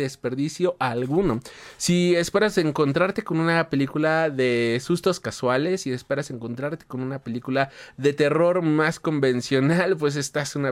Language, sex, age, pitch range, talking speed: Spanish, male, 30-49, 135-185 Hz, 140 wpm